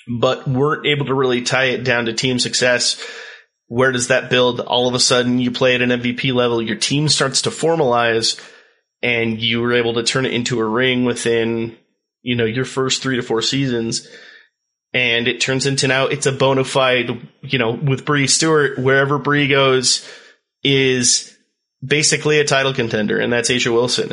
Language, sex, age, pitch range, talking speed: English, male, 30-49, 120-145 Hz, 185 wpm